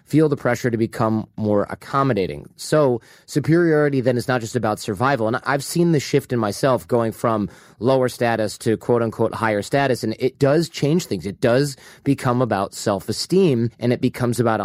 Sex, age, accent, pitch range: male, 30-49, American, 115-145 Hz